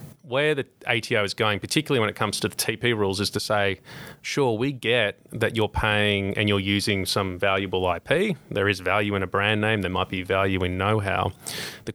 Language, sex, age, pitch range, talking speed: English, male, 30-49, 95-110 Hz, 210 wpm